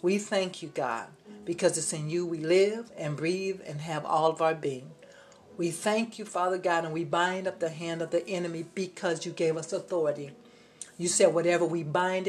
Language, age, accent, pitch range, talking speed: English, 60-79, American, 160-190 Hz, 205 wpm